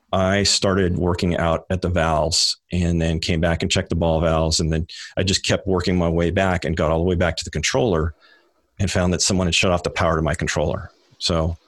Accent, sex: American, male